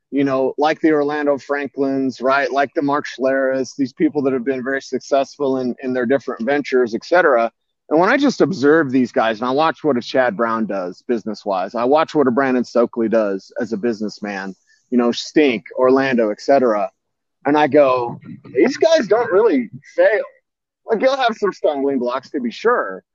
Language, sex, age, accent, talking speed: English, male, 30-49, American, 190 wpm